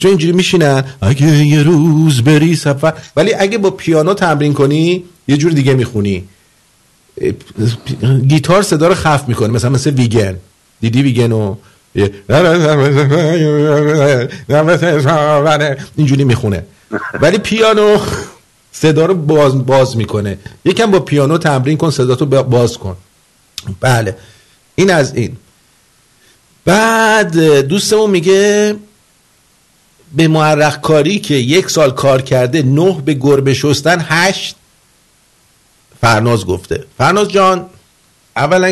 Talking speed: 105 wpm